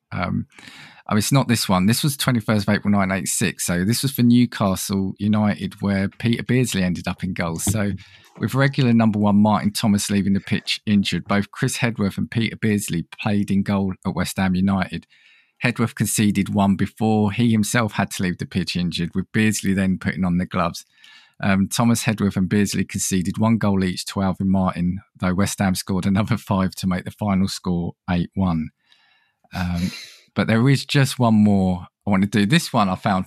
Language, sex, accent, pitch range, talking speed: English, male, British, 95-115 Hz, 195 wpm